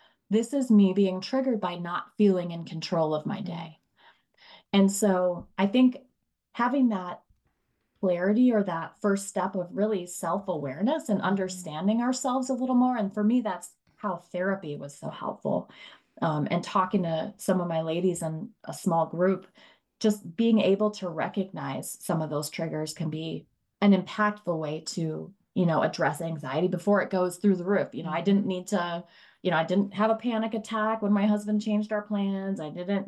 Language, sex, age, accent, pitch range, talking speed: English, female, 20-39, American, 175-215 Hz, 185 wpm